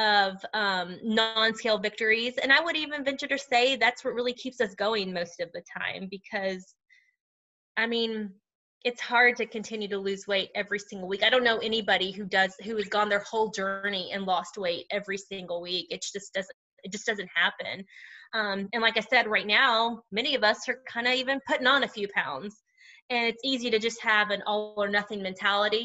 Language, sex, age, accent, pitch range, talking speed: English, female, 20-39, American, 200-255 Hz, 205 wpm